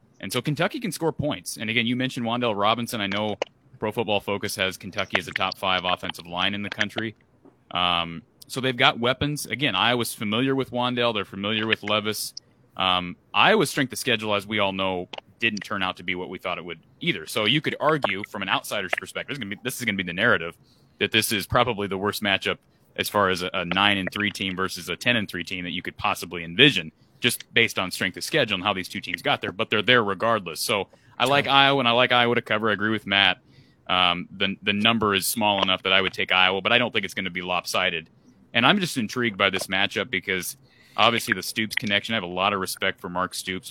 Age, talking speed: 30-49, 235 wpm